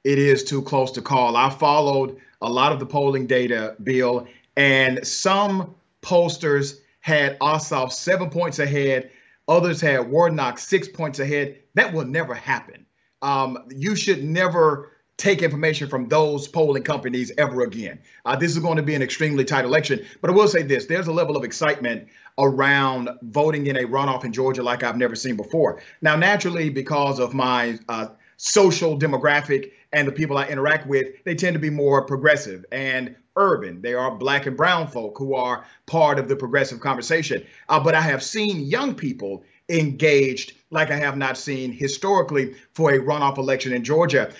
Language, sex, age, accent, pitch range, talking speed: English, male, 40-59, American, 130-160 Hz, 180 wpm